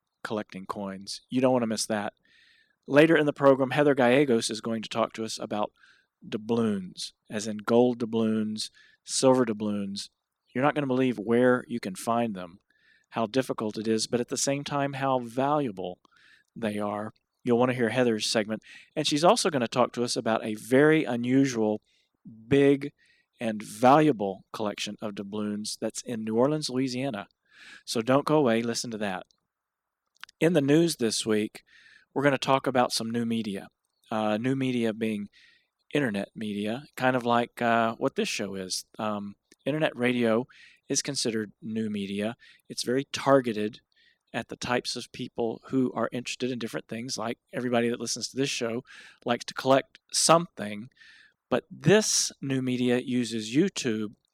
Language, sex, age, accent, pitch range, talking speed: English, male, 40-59, American, 110-135 Hz, 170 wpm